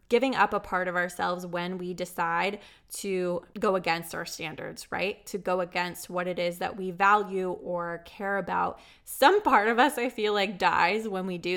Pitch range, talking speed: 180-210 Hz, 195 wpm